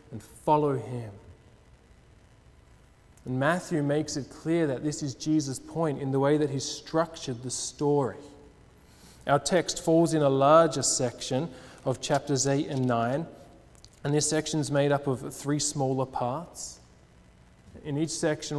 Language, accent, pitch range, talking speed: English, Australian, 130-165 Hz, 150 wpm